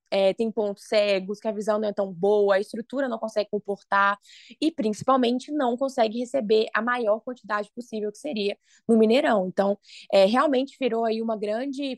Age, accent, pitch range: 20-39, Brazilian, 205-265 Hz